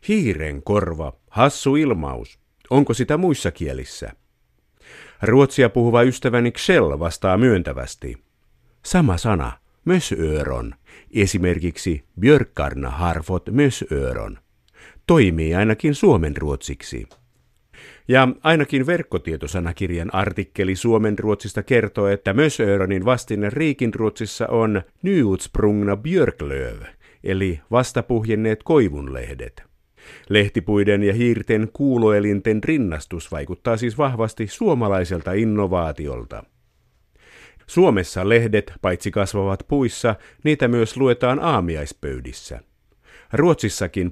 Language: Finnish